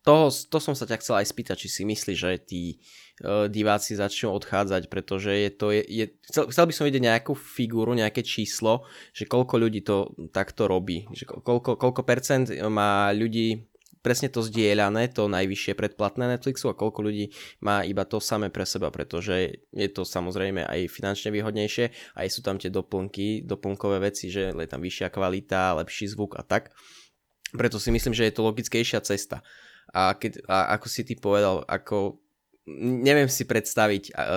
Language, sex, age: Czech, male, 20-39